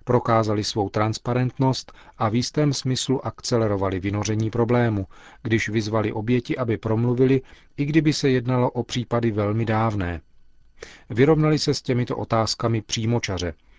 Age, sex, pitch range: 40-59, male, 105-125 Hz